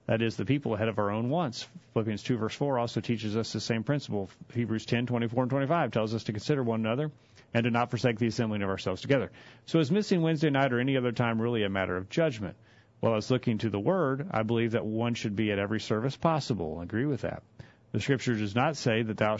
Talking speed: 255 wpm